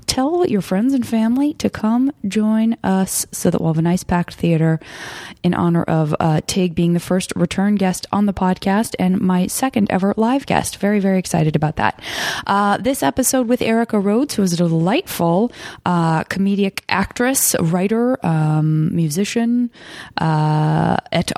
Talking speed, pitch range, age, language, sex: 165 wpm, 165-205 Hz, 20-39, English, female